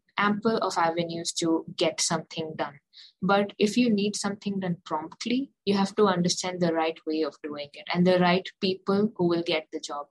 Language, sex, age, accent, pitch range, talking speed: English, female, 20-39, Indian, 165-195 Hz, 195 wpm